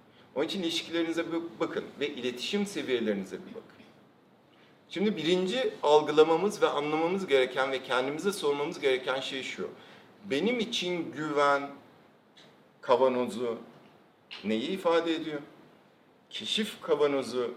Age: 50-69